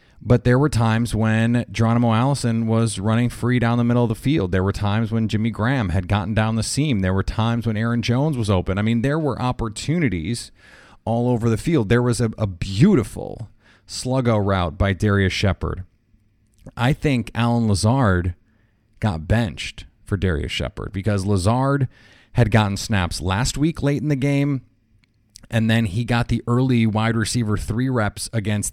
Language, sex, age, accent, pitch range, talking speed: English, male, 30-49, American, 105-120 Hz, 180 wpm